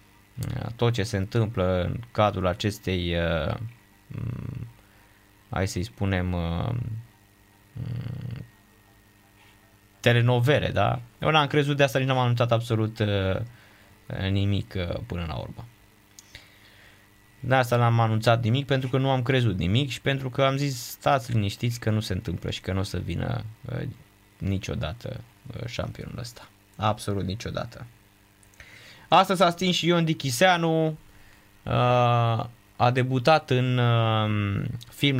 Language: Romanian